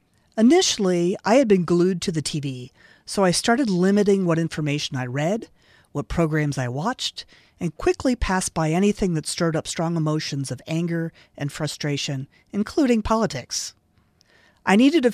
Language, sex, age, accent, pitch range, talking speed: English, female, 40-59, American, 150-200 Hz, 155 wpm